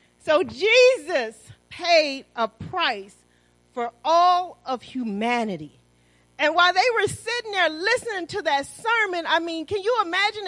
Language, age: English, 40-59